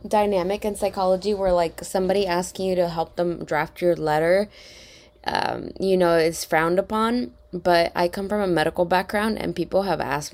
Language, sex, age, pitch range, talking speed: English, female, 20-39, 160-195 Hz, 180 wpm